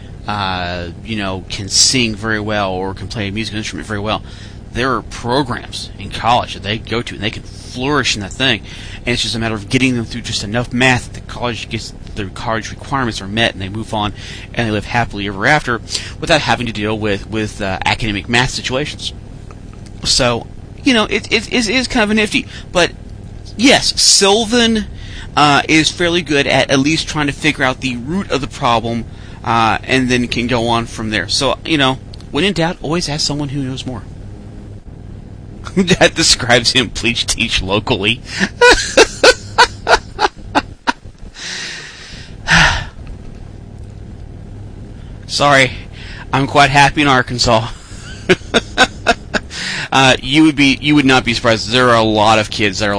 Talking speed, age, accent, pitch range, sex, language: 170 wpm, 30-49, American, 100-130 Hz, male, English